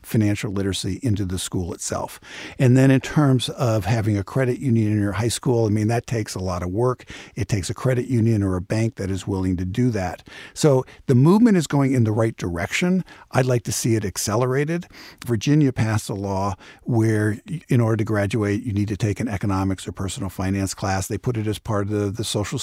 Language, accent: English, American